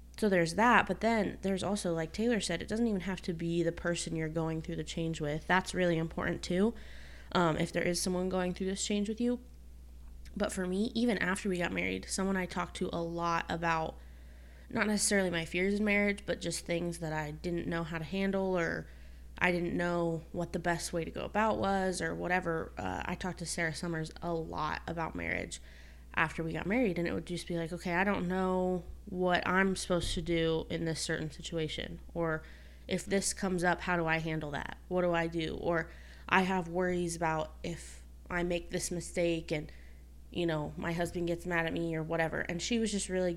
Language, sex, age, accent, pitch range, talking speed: English, female, 20-39, American, 160-185 Hz, 215 wpm